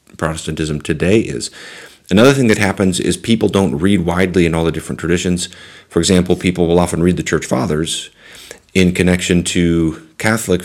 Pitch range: 80-95 Hz